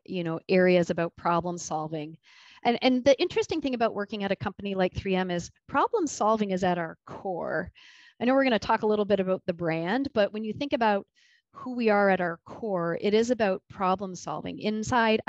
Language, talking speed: English, 210 wpm